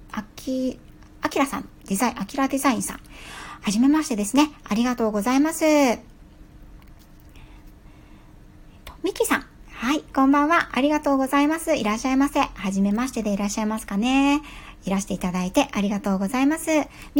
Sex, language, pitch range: male, Japanese, 205-285 Hz